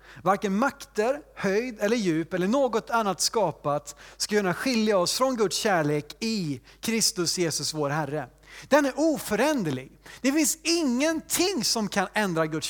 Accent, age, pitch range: native, 30-49, 170-245 Hz